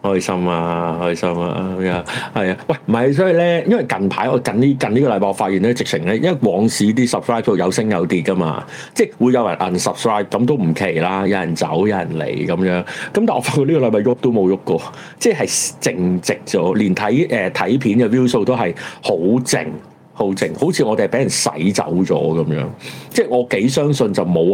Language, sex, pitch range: Chinese, male, 90-120 Hz